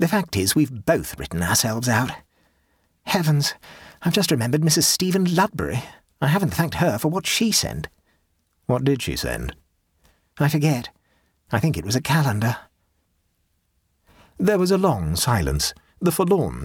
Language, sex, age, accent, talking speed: English, male, 50-69, British, 150 wpm